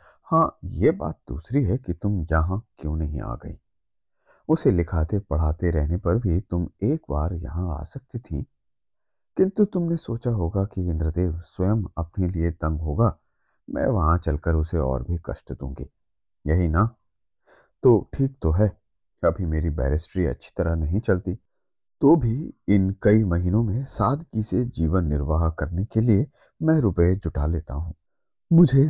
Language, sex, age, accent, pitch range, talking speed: Hindi, male, 30-49, native, 85-115 Hz, 160 wpm